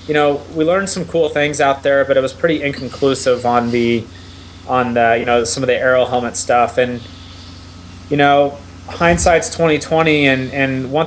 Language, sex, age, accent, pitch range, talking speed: English, male, 20-39, American, 115-140 Hz, 190 wpm